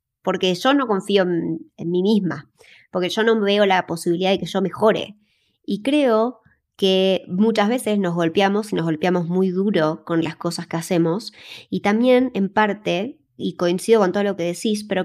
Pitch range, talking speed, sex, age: 170-210 Hz, 190 wpm, male, 20-39